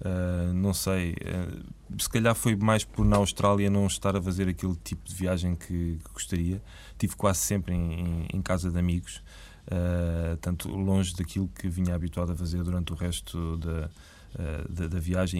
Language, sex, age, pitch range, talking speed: Portuguese, male, 20-39, 85-95 Hz, 180 wpm